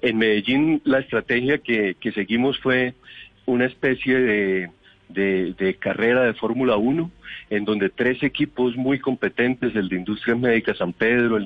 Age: 40-59